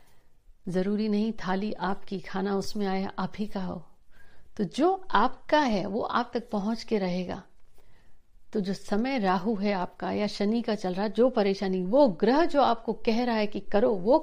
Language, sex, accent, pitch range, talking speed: Hindi, female, native, 195-235 Hz, 180 wpm